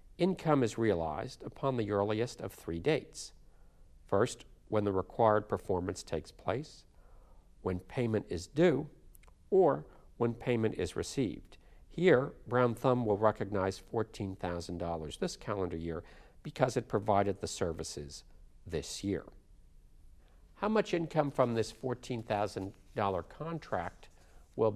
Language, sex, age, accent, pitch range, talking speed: English, male, 50-69, American, 85-120 Hz, 120 wpm